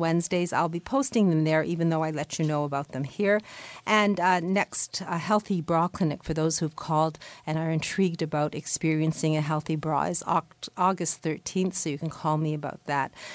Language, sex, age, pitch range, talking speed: English, female, 50-69, 155-185 Hz, 200 wpm